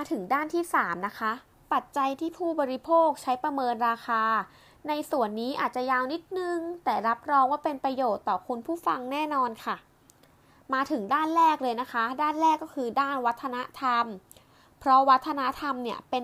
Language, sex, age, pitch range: Thai, female, 20-39, 240-300 Hz